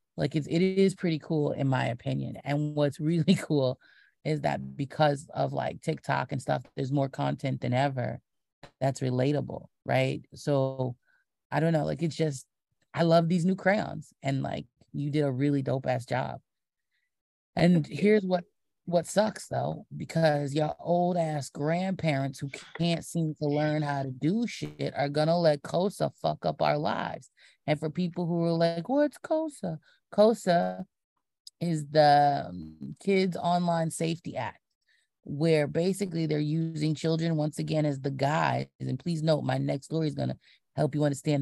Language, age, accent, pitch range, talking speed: English, 30-49, American, 135-165 Hz, 170 wpm